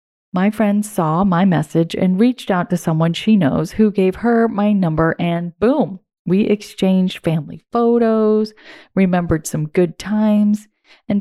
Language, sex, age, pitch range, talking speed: English, female, 30-49, 170-215 Hz, 150 wpm